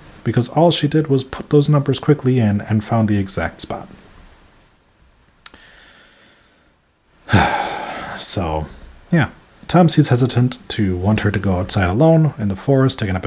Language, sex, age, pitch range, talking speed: English, male, 30-49, 90-130 Hz, 145 wpm